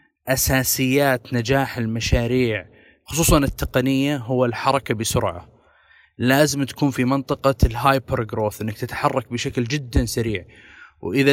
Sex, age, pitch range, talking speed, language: male, 20-39, 120-140 Hz, 100 wpm, Arabic